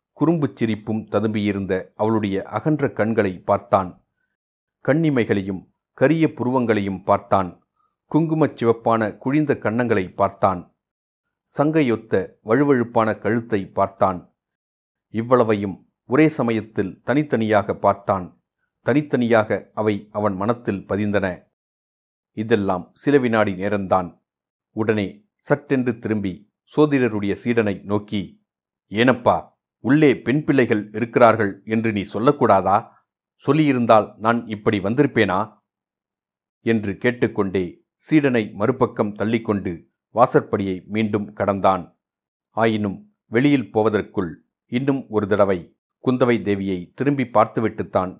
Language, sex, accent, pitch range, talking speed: Tamil, male, native, 100-120 Hz, 85 wpm